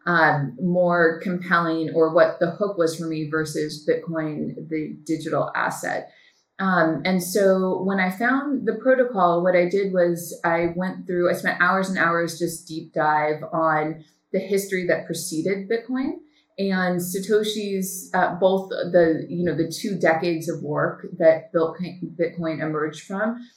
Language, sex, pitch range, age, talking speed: English, female, 160-190 Hz, 30-49, 155 wpm